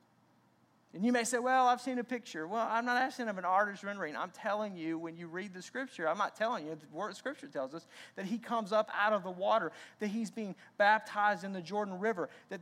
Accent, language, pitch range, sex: American, English, 200-245 Hz, male